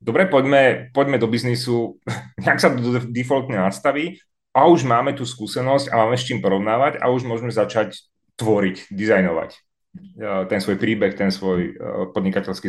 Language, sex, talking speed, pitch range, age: Czech, male, 145 wpm, 110-140 Hz, 30-49